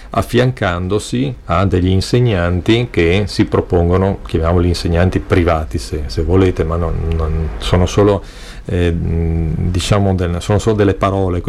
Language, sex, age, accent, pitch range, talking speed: Italian, male, 40-59, native, 85-105 Hz, 130 wpm